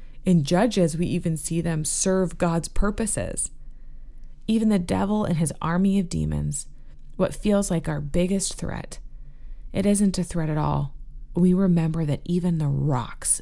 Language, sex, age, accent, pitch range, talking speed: English, female, 20-39, American, 140-175 Hz, 155 wpm